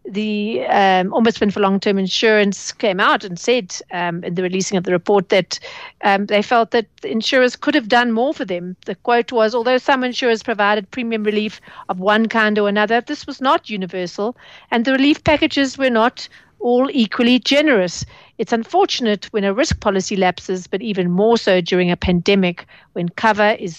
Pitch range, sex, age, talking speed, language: 190-230 Hz, female, 50-69, 185 wpm, English